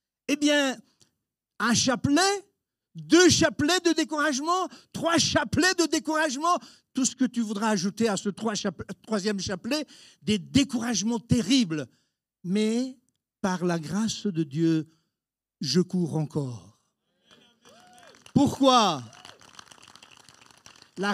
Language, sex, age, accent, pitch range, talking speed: French, male, 60-79, French, 175-290 Hz, 100 wpm